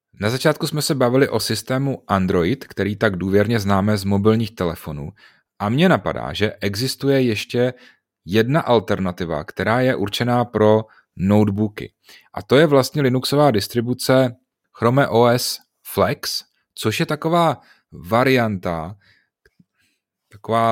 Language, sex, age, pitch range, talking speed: Czech, male, 30-49, 100-125 Hz, 120 wpm